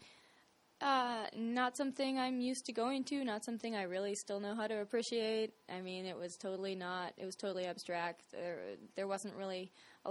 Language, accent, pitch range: English, American, 180-230 Hz